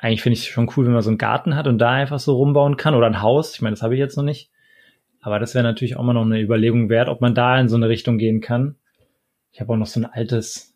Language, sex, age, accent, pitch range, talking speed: German, male, 20-39, German, 115-140 Hz, 305 wpm